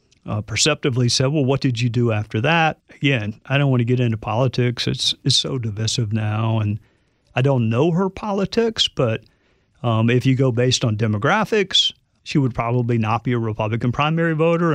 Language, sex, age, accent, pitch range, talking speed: English, male, 50-69, American, 120-155 Hz, 185 wpm